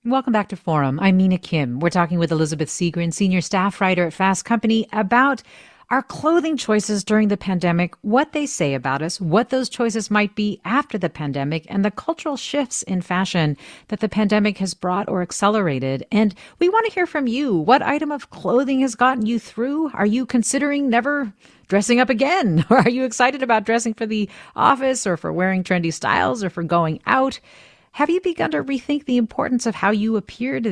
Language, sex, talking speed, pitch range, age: English, female, 200 wpm, 175-250 Hz, 40-59